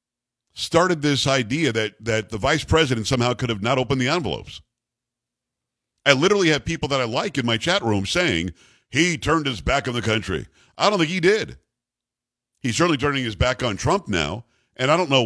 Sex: male